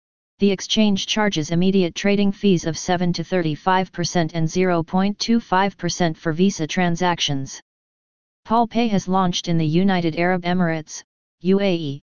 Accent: American